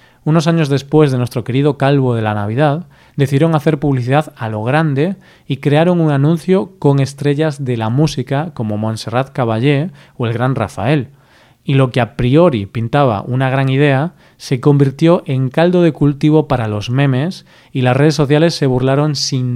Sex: male